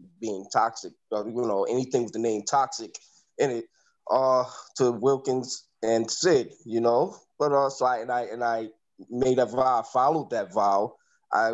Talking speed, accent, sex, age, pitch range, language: 170 wpm, American, male, 20-39, 115-145 Hz, English